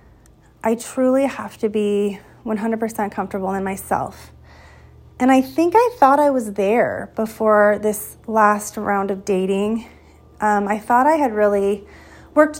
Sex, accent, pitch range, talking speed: female, American, 200-245 Hz, 145 wpm